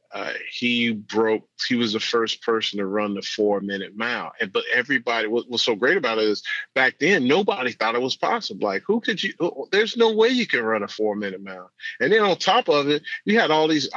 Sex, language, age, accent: male, English, 40-59, American